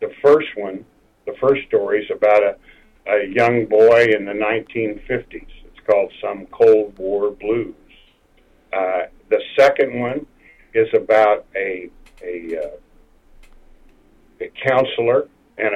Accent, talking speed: American, 120 wpm